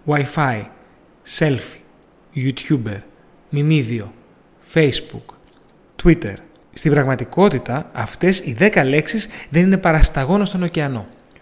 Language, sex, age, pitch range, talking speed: Greek, male, 30-49, 130-180 Hz, 95 wpm